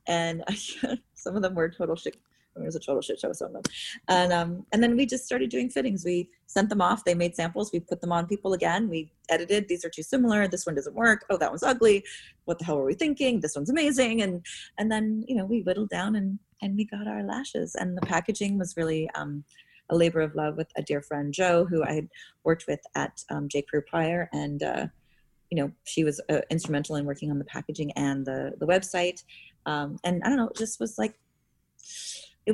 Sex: female